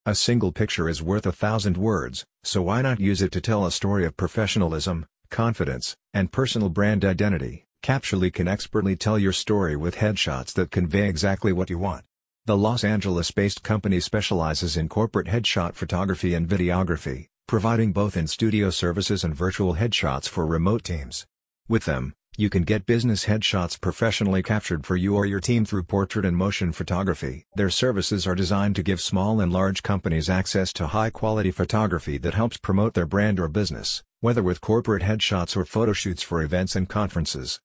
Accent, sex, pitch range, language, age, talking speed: American, male, 90-105 Hz, English, 50-69, 175 wpm